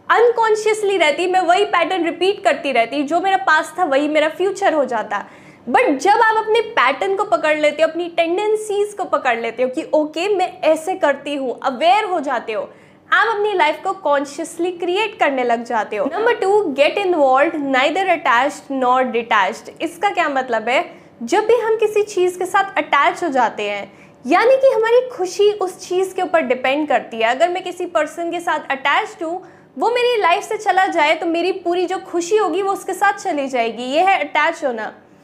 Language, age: Hindi, 20-39